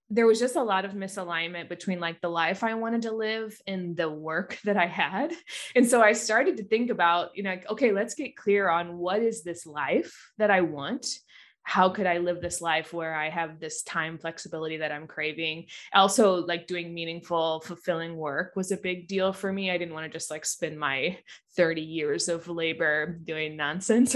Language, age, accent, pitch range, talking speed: English, 20-39, American, 165-205 Hz, 210 wpm